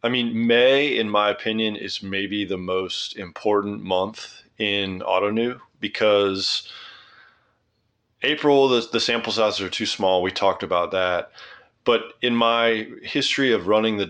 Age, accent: 30-49, American